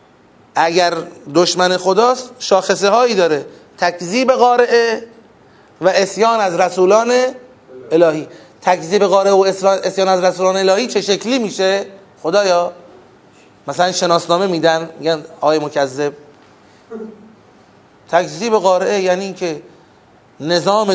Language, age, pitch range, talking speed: Persian, 30-49, 165-215 Hz, 95 wpm